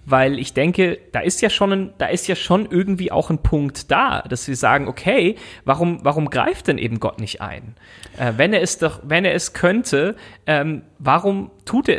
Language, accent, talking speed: German, German, 210 wpm